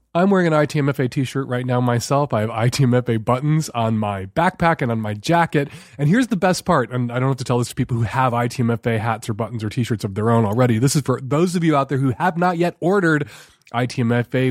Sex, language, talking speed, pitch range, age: male, English, 245 wpm, 115-165 Hz, 30-49